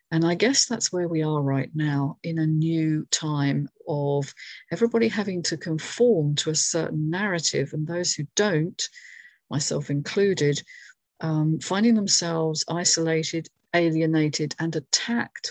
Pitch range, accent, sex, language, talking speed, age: 150-180 Hz, British, female, English, 135 wpm, 50-69